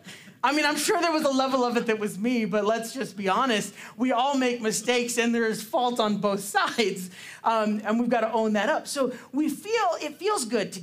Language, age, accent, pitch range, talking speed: English, 40-59, American, 195-245 Hz, 245 wpm